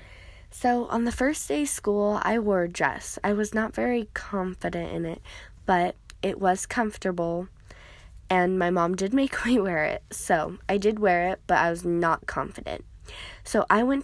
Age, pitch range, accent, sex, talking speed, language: 10-29, 160-200 Hz, American, female, 185 wpm, English